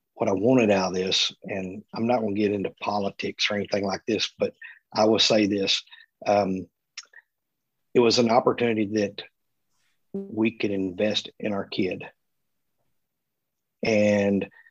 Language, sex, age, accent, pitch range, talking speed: English, male, 50-69, American, 105-120 Hz, 145 wpm